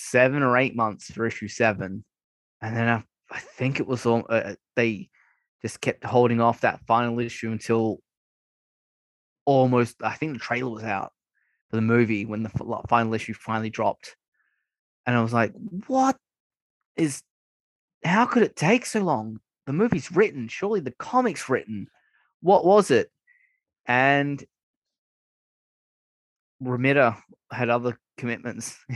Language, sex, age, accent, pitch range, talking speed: English, male, 20-39, Australian, 115-130 Hz, 140 wpm